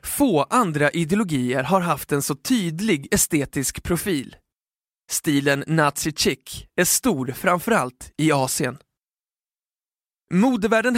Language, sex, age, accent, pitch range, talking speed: Swedish, male, 20-39, native, 145-180 Hz, 100 wpm